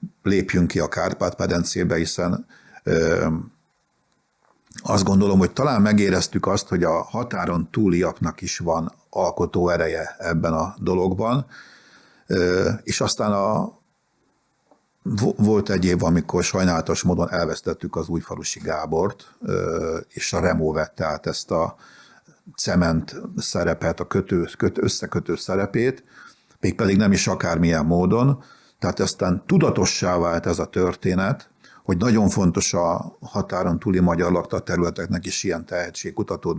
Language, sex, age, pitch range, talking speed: Hungarian, male, 60-79, 85-105 Hz, 125 wpm